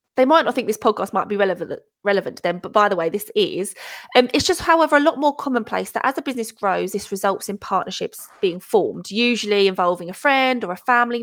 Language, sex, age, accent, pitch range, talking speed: English, female, 20-39, British, 190-245 Hz, 240 wpm